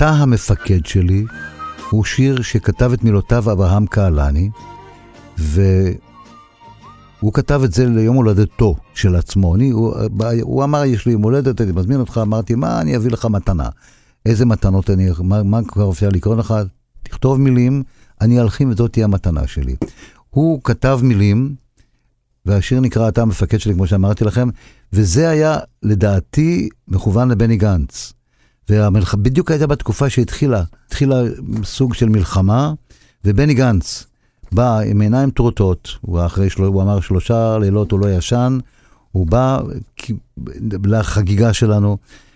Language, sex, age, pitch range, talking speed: Hebrew, male, 50-69, 100-125 Hz, 135 wpm